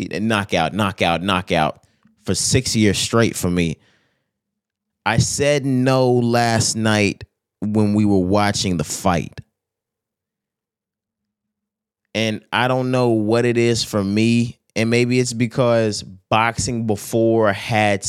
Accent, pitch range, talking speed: American, 95-115 Hz, 120 wpm